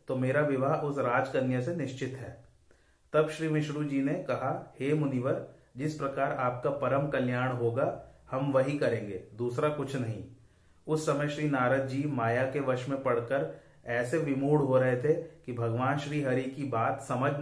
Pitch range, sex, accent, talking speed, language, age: 125-145 Hz, male, native, 170 wpm, Hindi, 40-59